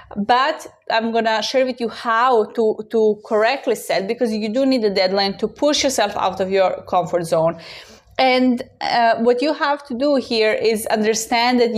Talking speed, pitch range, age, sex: 185 wpm, 210-260 Hz, 20-39, female